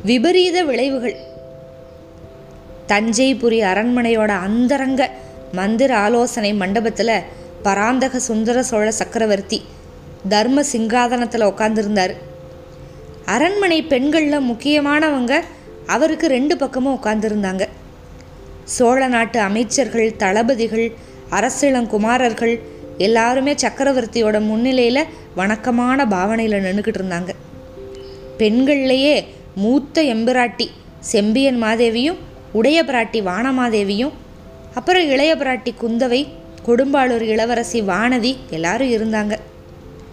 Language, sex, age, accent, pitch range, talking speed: Tamil, female, 20-39, native, 210-270 Hz, 80 wpm